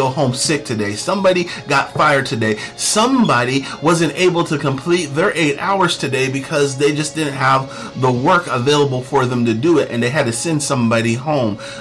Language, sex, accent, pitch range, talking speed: English, male, American, 125-170 Hz, 185 wpm